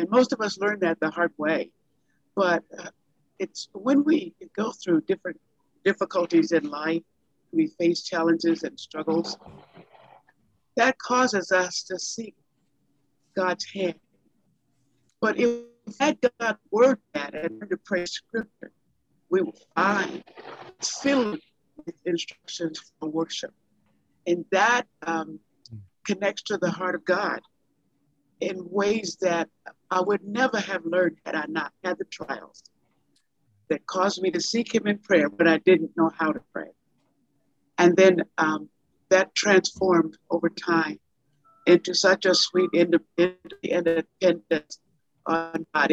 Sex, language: female, English